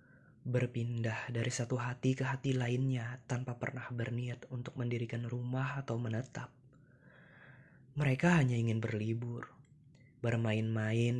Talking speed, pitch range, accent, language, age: 105 wpm, 120-135 Hz, native, Indonesian, 20-39